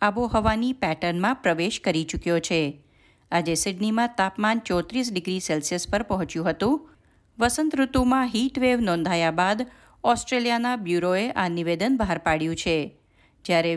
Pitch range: 170-235 Hz